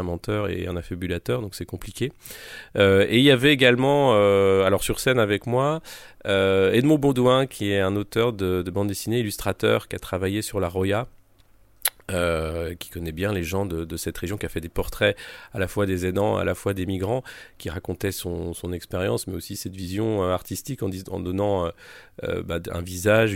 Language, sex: French, male